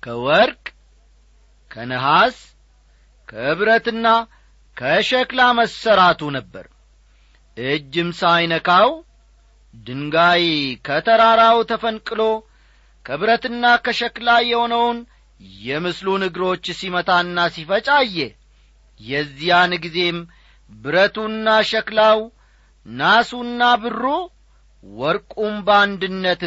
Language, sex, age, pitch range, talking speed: Amharic, male, 40-59, 145-220 Hz, 55 wpm